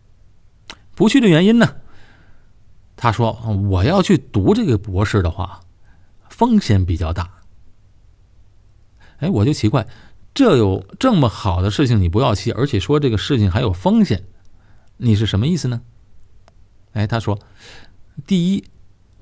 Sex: male